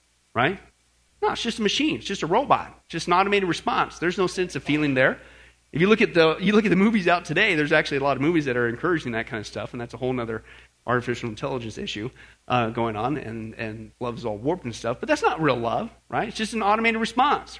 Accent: American